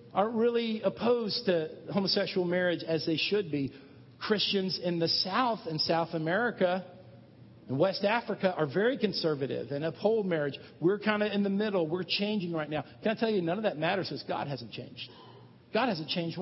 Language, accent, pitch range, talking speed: English, American, 155-210 Hz, 185 wpm